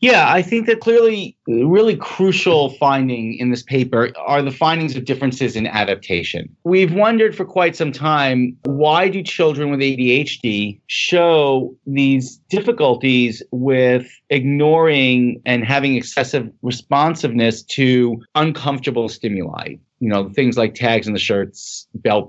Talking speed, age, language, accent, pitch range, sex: 135 wpm, 40-59, English, American, 120-155 Hz, male